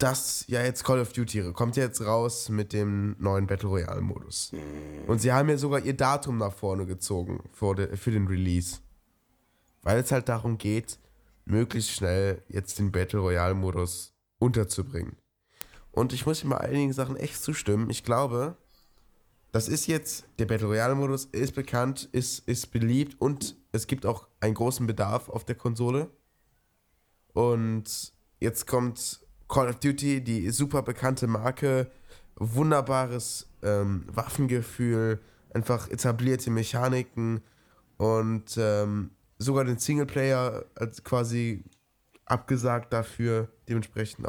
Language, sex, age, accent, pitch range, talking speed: German, male, 10-29, German, 100-125 Hz, 135 wpm